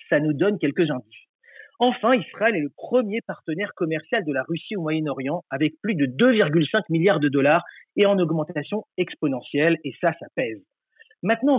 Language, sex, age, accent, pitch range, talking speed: French, male, 40-59, French, 155-215 Hz, 170 wpm